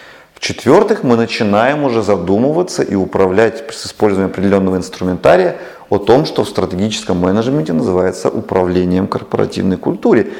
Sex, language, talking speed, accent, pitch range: male, Russian, 120 wpm, native, 95-120 Hz